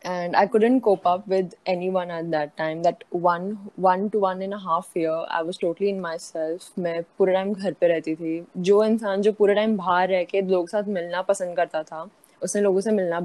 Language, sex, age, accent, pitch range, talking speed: Hindi, female, 10-29, native, 185-265 Hz, 215 wpm